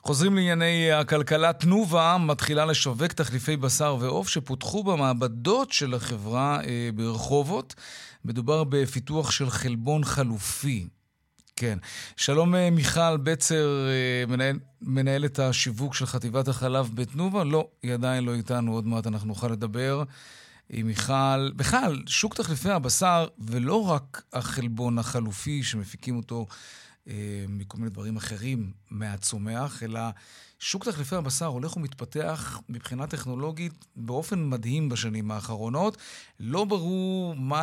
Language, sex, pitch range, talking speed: Hebrew, male, 120-155 Hz, 115 wpm